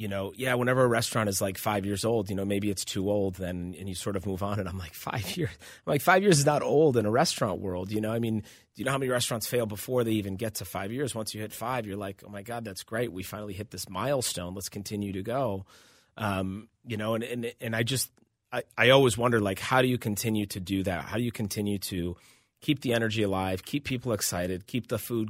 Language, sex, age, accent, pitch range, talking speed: English, male, 30-49, American, 95-115 Hz, 270 wpm